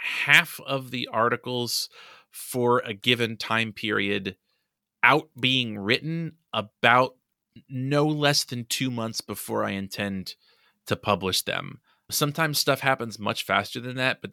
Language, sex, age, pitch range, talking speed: English, male, 20-39, 100-120 Hz, 135 wpm